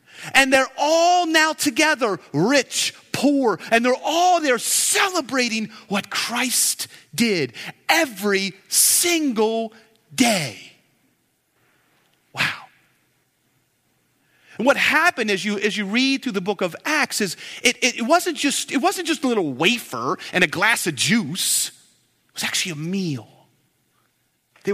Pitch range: 185-270 Hz